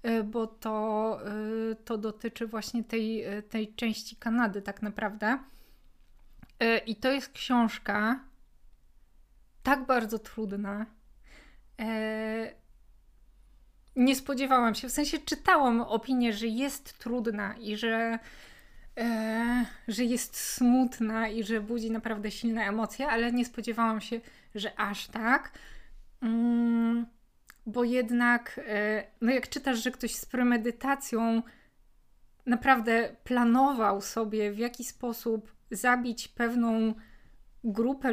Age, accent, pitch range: 20-39, native, 220-245 Hz